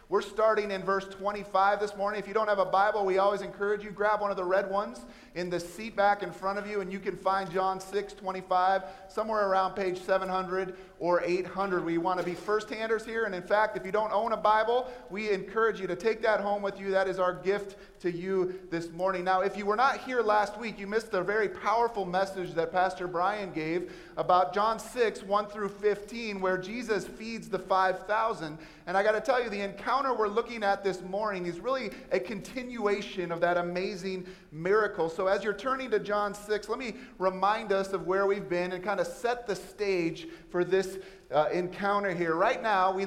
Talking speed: 215 wpm